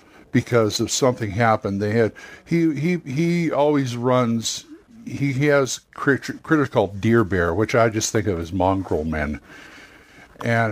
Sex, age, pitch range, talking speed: male, 60-79, 110-135 Hz, 155 wpm